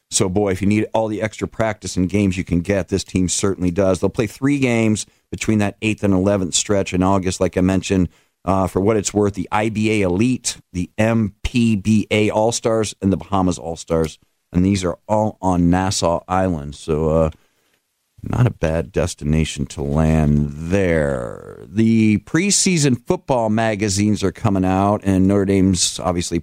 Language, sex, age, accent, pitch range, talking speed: English, male, 50-69, American, 90-115 Hz, 170 wpm